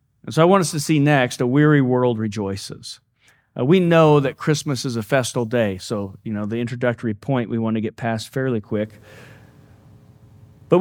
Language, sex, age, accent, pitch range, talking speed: English, male, 40-59, American, 125-180 Hz, 195 wpm